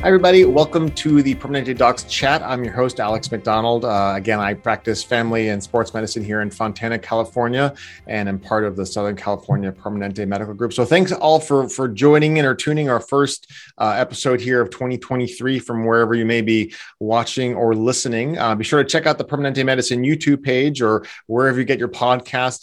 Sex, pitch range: male, 105-135 Hz